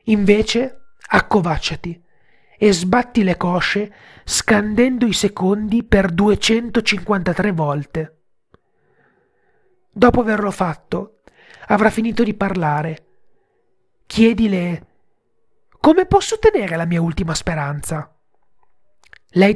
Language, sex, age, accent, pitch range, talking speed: Italian, male, 40-59, native, 180-235 Hz, 85 wpm